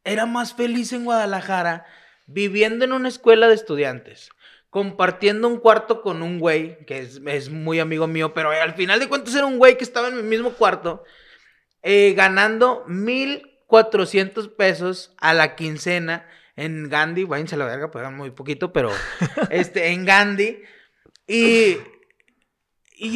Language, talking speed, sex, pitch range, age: French, 160 wpm, male, 170-225 Hz, 30-49